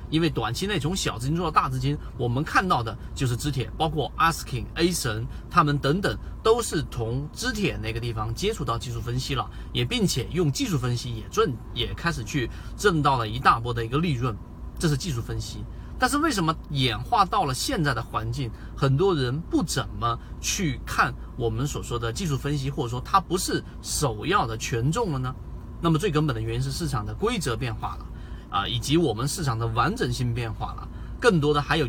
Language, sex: Chinese, male